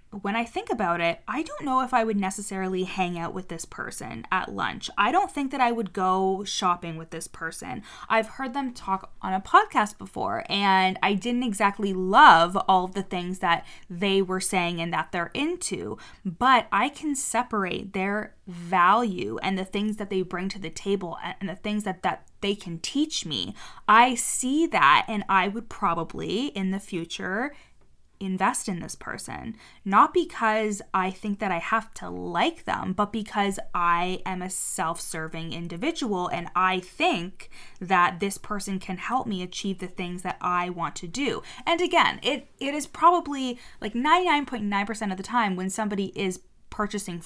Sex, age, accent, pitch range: female, 20-39, American, 185-225 Hz